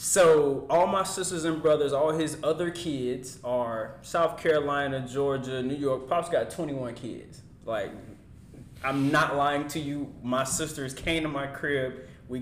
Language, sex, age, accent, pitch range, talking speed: English, male, 20-39, American, 135-165 Hz, 160 wpm